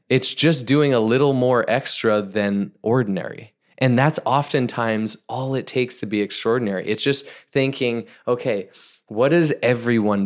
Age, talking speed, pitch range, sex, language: 20-39, 145 wpm, 105-135 Hz, male, English